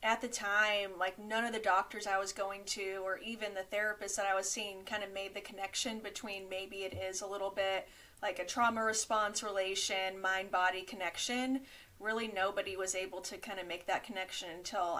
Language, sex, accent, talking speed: English, female, American, 200 wpm